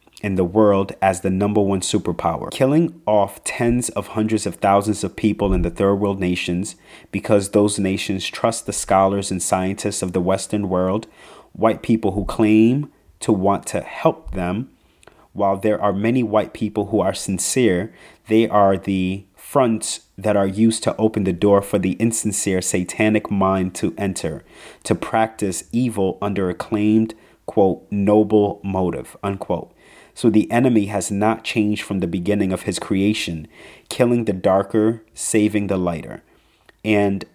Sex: male